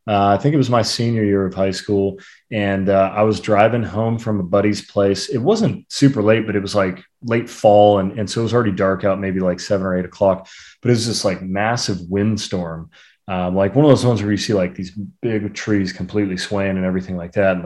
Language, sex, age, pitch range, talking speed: English, male, 30-49, 95-115 Hz, 245 wpm